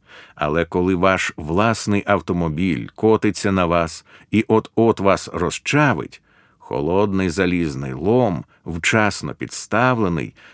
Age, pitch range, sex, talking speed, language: 50-69, 85-125 Hz, male, 95 wpm, Ukrainian